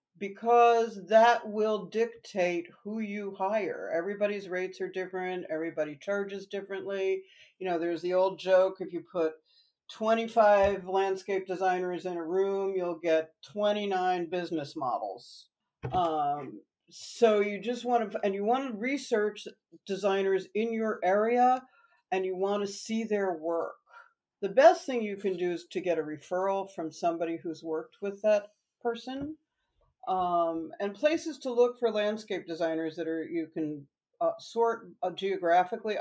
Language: English